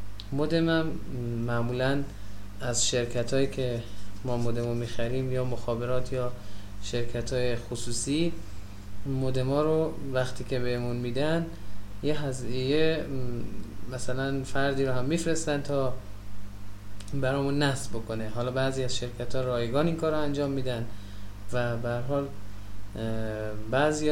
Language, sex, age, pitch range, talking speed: Persian, male, 20-39, 105-130 Hz, 125 wpm